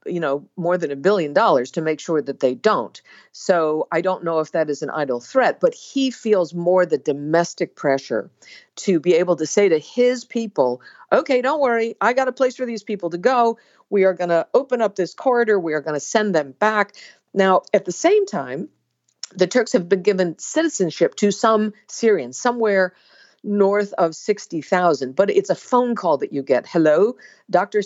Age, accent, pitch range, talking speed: 50-69, American, 165-215 Hz, 200 wpm